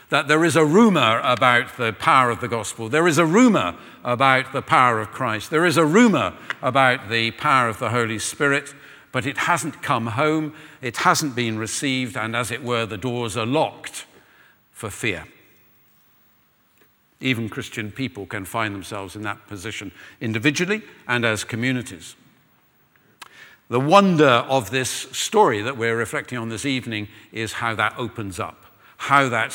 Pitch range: 110-140 Hz